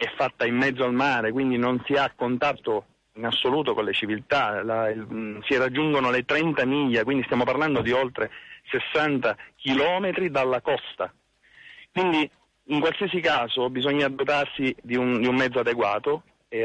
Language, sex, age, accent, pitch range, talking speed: Italian, male, 40-59, native, 125-165 Hz, 160 wpm